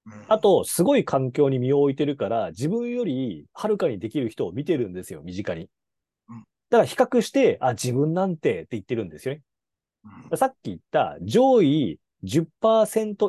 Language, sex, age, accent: Japanese, male, 30-49, native